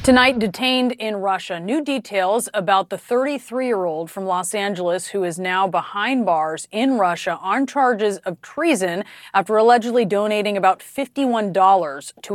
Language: English